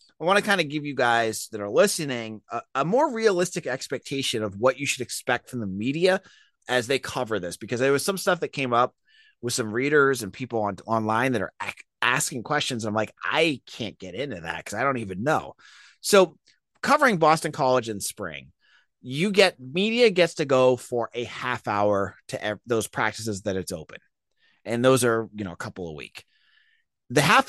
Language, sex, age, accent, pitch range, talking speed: English, male, 30-49, American, 120-180 Hz, 205 wpm